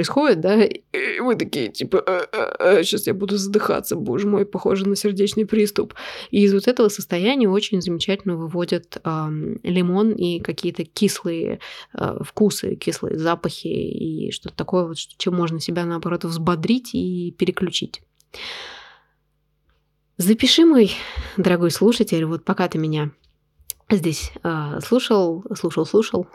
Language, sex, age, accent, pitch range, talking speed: Russian, female, 20-39, native, 170-210 Hz, 125 wpm